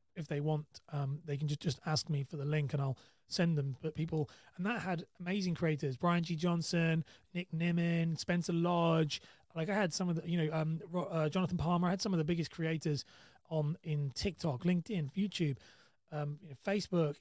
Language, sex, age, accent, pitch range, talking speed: English, male, 30-49, British, 145-175 Hz, 200 wpm